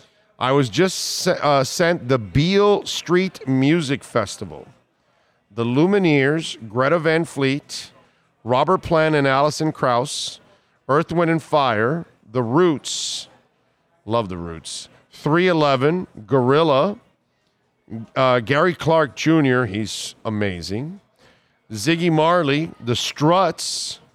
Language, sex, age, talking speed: English, male, 40-59, 100 wpm